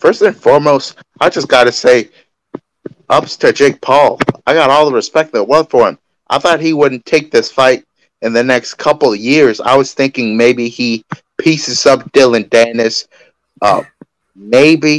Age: 30-49